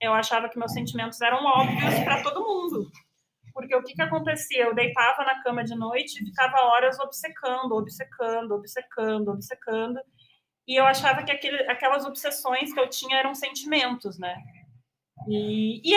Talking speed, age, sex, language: 160 wpm, 30-49, female, Portuguese